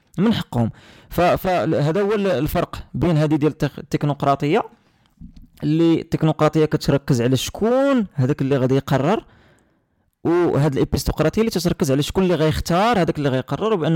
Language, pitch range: Arabic, 140-170 Hz